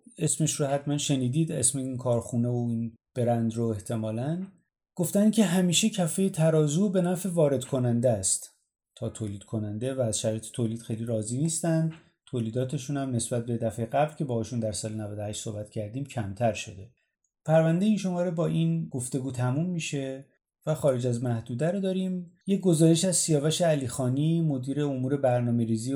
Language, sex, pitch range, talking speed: Persian, male, 115-160 Hz, 160 wpm